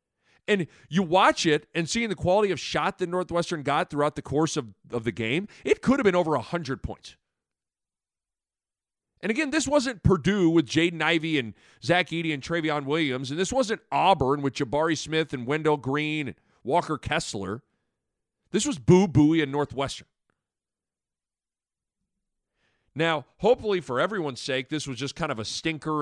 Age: 40-59